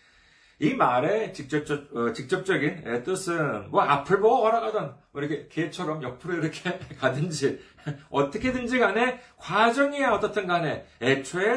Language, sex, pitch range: Korean, male, 135-210 Hz